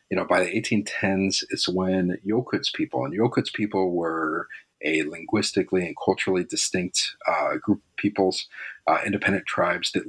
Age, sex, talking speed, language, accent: 40-59, male, 155 wpm, English, American